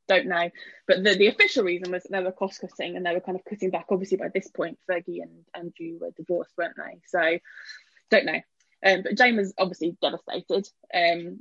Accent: British